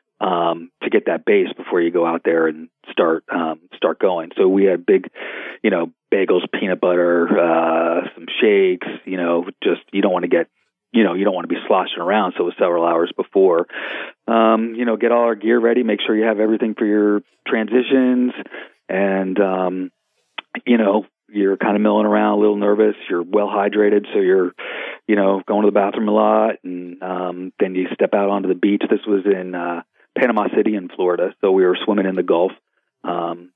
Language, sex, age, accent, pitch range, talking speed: English, male, 40-59, American, 90-110 Hz, 205 wpm